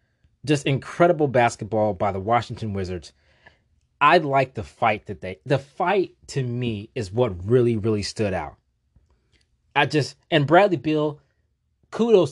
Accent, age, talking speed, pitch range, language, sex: American, 20-39, 140 wpm, 105-140 Hz, English, male